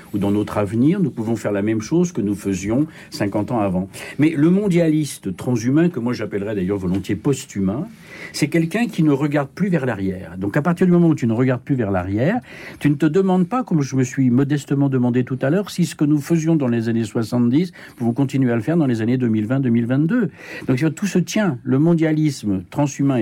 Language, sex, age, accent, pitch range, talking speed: French, male, 60-79, French, 115-160 Hz, 220 wpm